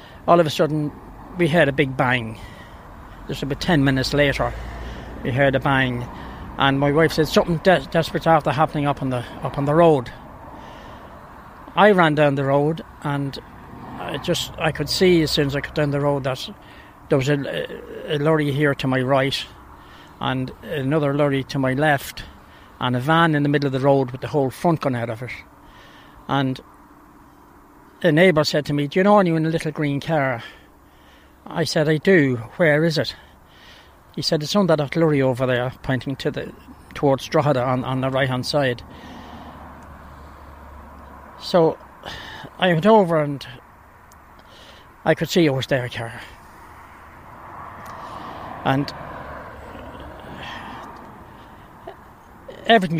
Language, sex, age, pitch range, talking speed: English, male, 60-79, 125-160 Hz, 160 wpm